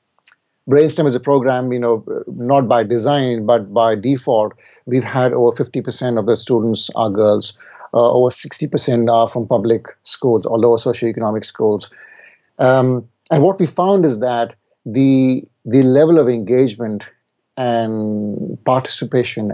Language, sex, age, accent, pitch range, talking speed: English, male, 50-69, Indian, 115-140 Hz, 140 wpm